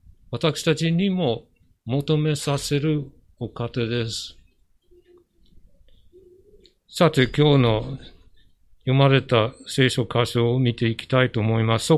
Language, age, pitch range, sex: Japanese, 50-69, 120-165 Hz, male